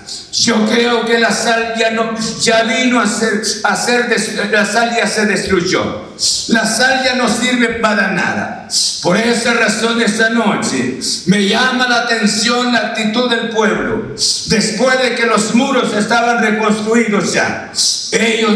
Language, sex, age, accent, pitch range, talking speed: Spanish, male, 60-79, Mexican, 225-250 Hz, 150 wpm